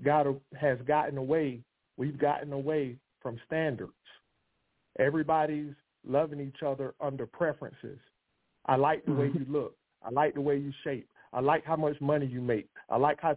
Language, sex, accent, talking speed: English, male, American, 165 wpm